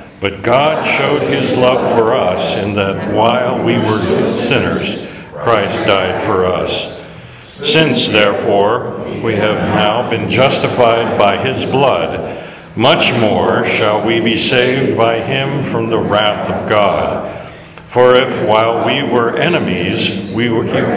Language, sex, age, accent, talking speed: English, male, 60-79, American, 135 wpm